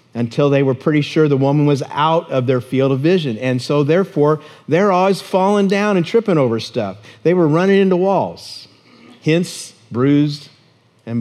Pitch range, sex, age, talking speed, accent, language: 125-160 Hz, male, 50-69, 175 wpm, American, English